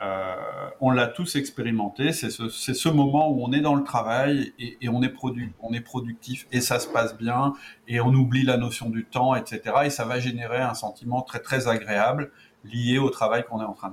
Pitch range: 115-140 Hz